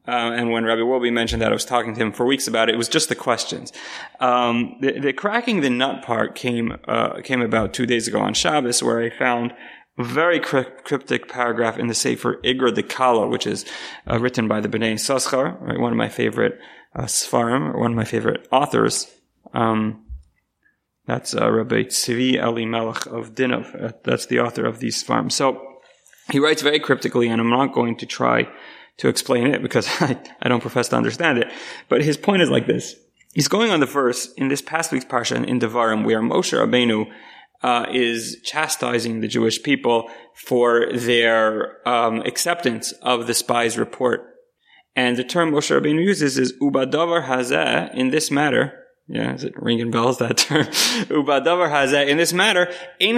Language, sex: English, male